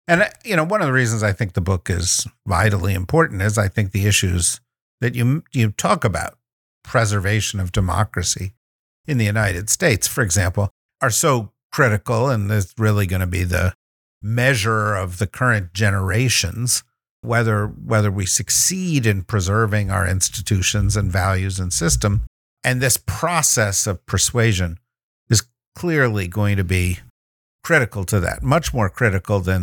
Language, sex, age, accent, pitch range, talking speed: English, male, 50-69, American, 95-125 Hz, 155 wpm